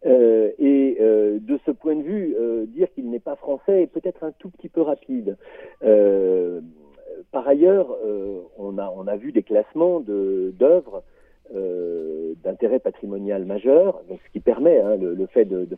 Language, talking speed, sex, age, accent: French, 185 wpm, male, 50-69, French